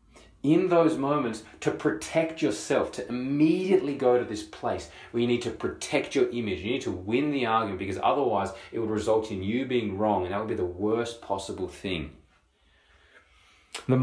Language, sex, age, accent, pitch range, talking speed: English, male, 30-49, Australian, 100-135 Hz, 185 wpm